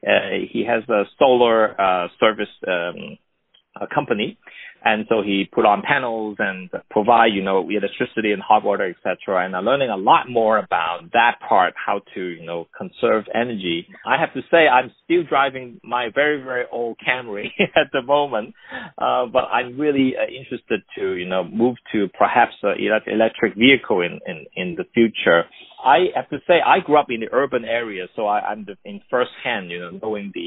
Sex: male